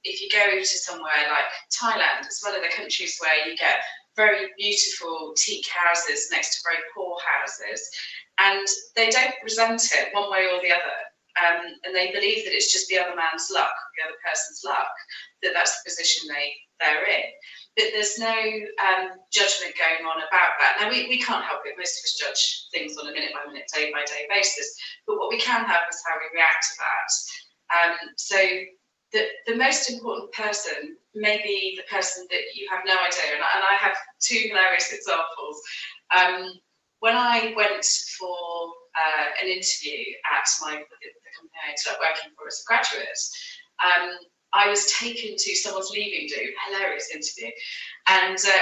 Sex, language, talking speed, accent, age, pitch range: female, English, 190 wpm, British, 30-49, 175-250 Hz